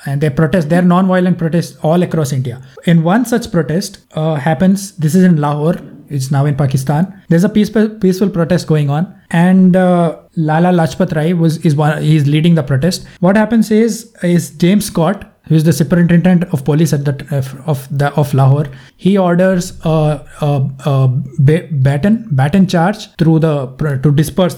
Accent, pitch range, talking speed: Indian, 140-175 Hz, 175 wpm